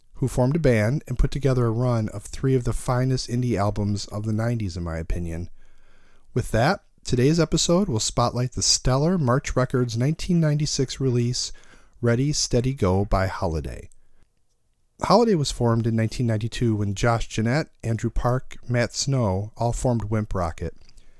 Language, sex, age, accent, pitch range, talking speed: English, male, 40-59, American, 105-135 Hz, 155 wpm